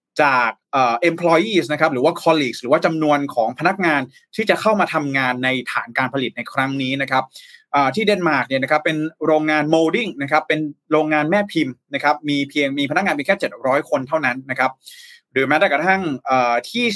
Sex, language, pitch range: male, Thai, 135-180 Hz